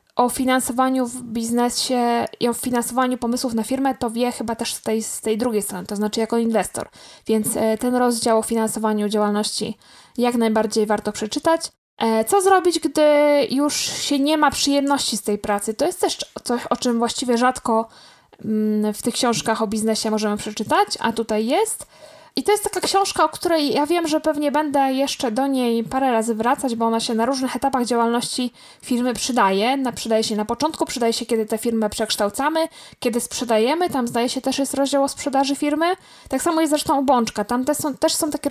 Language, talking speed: Polish, 190 wpm